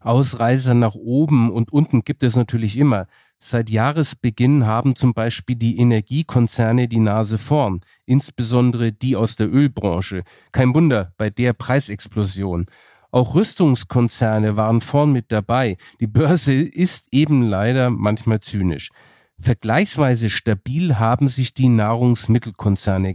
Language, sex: German, male